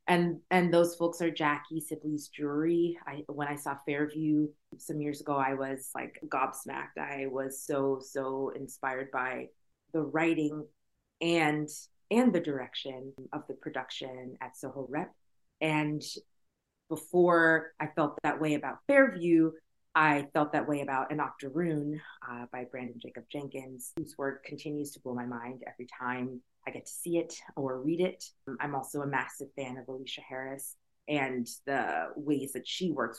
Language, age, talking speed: English, 30-49, 160 wpm